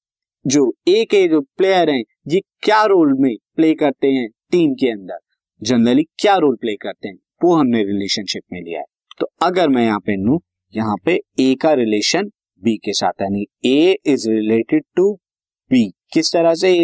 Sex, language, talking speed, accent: male, Hindi, 190 wpm, native